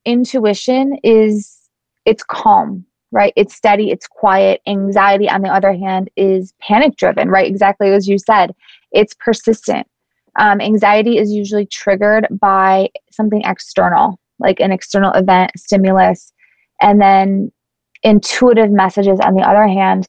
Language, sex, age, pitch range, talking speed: English, female, 20-39, 195-220 Hz, 135 wpm